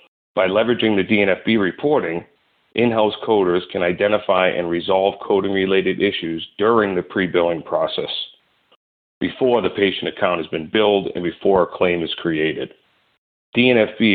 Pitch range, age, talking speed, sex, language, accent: 85-105 Hz, 40-59, 130 wpm, male, English, American